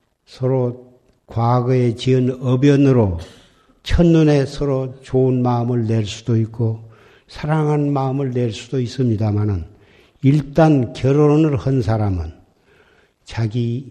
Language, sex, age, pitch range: Korean, male, 60-79, 110-140 Hz